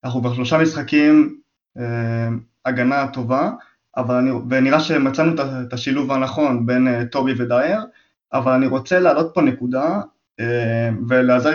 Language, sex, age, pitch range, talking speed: Hebrew, male, 20-39, 120-155 Hz, 120 wpm